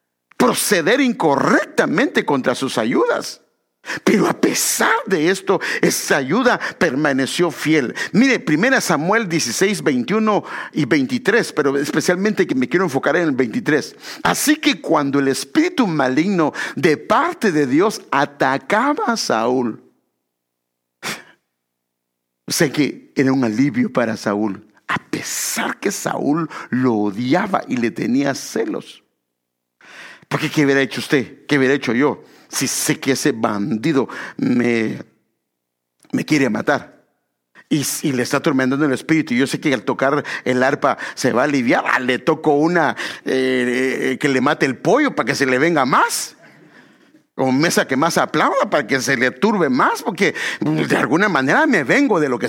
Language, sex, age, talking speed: English, male, 50-69, 150 wpm